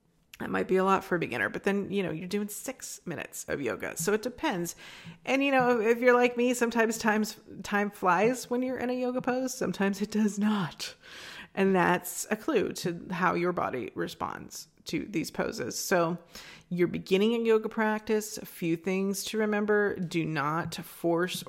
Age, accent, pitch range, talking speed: 30-49, American, 180-235 Hz, 190 wpm